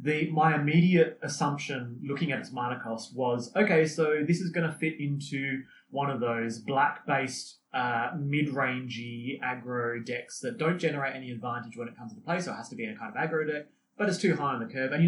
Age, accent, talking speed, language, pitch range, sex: 30-49, Australian, 225 wpm, English, 125-170 Hz, male